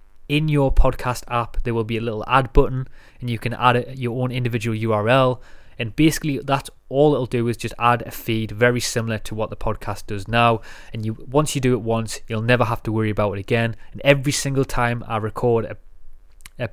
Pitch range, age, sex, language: 110-130 Hz, 20-39, male, English